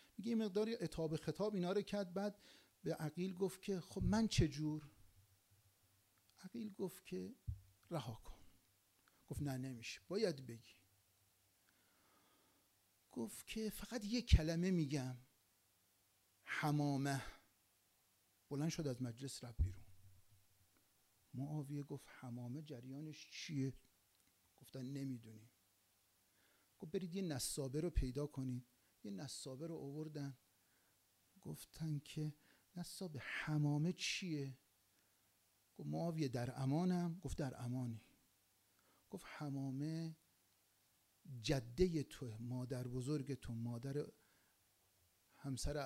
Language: Persian